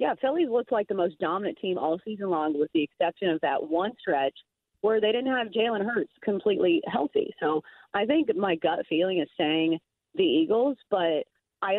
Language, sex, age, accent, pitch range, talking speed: English, female, 40-59, American, 165-220 Hz, 195 wpm